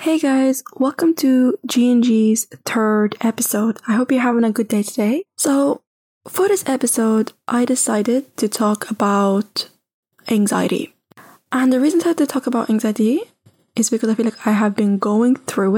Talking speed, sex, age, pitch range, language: 165 wpm, female, 10-29, 200-245 Hz, English